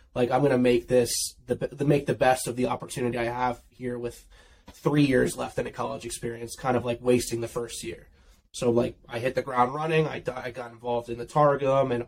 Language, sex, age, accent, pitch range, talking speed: English, male, 20-39, American, 120-125 Hz, 235 wpm